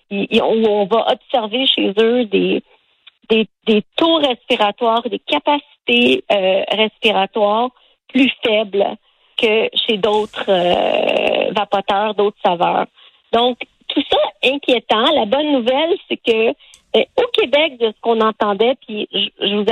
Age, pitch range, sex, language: 40-59, 205-255 Hz, female, French